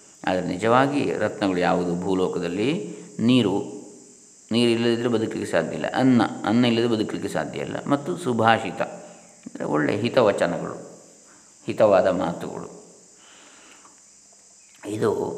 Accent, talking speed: native, 95 wpm